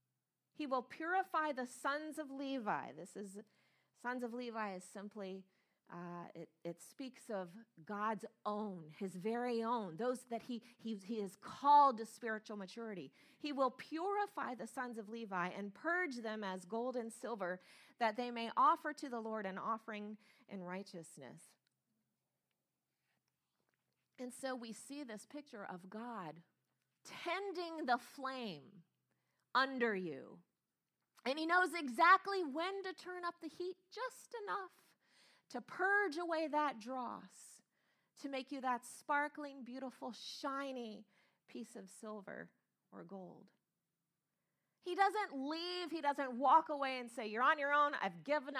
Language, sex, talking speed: English, female, 145 wpm